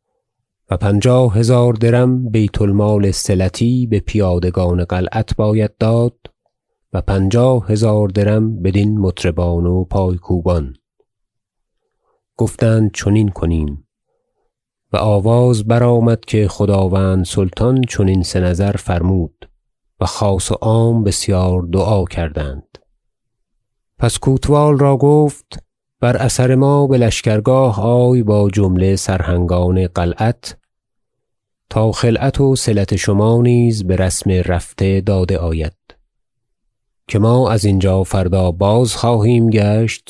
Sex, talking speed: male, 110 wpm